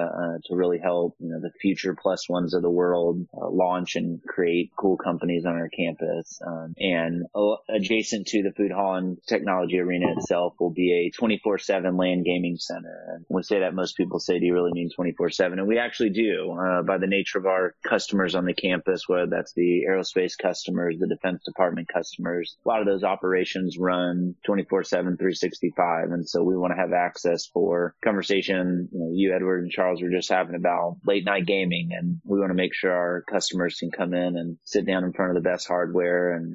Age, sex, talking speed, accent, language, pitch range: 30-49, male, 210 wpm, American, English, 85-95 Hz